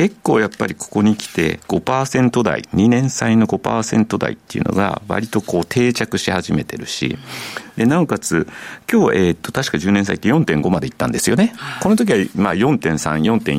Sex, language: male, Japanese